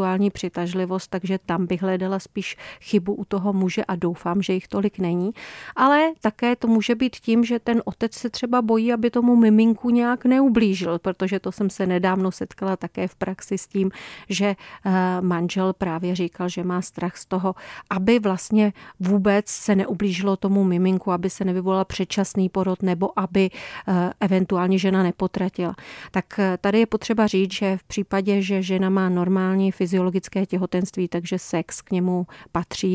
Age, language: 40-59, Czech